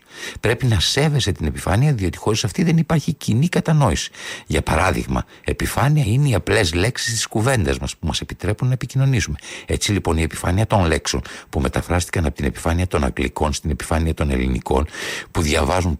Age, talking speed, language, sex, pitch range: 60-79, 175 wpm, Greek, male, 75-120 Hz